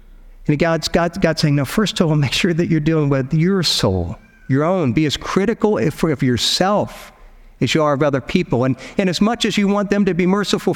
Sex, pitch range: male, 120-175 Hz